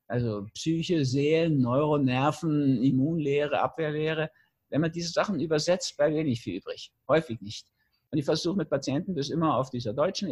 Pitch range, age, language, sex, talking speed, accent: 115-150 Hz, 50-69, German, male, 165 wpm, German